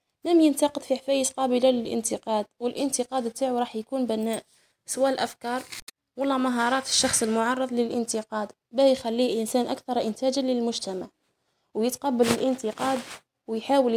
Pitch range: 230-265 Hz